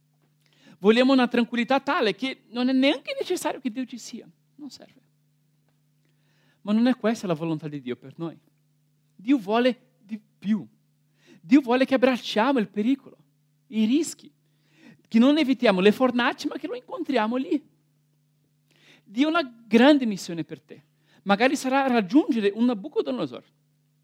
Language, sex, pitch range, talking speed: Italian, male, 150-250 Hz, 145 wpm